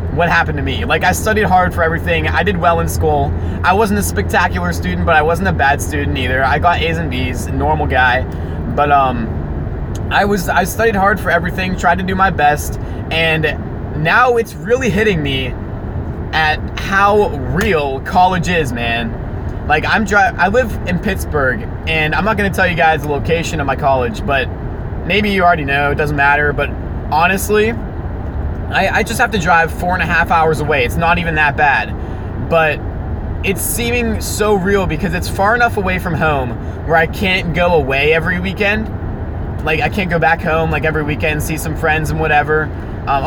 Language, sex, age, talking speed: English, male, 20-39, 195 wpm